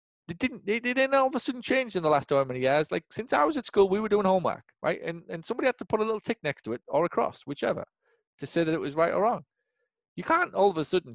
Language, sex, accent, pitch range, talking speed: English, male, British, 110-170 Hz, 295 wpm